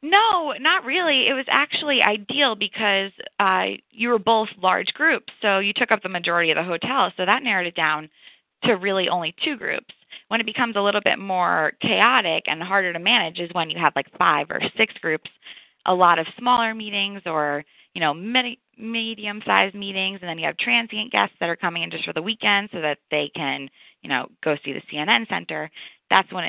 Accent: American